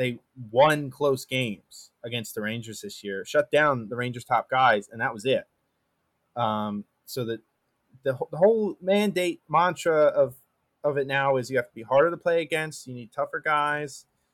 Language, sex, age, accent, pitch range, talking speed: English, male, 20-39, American, 120-155 Hz, 185 wpm